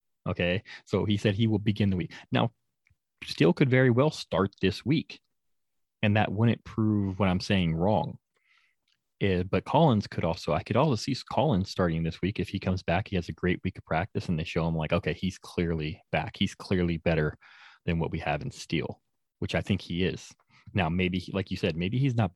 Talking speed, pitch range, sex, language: 210 wpm, 85-100 Hz, male, English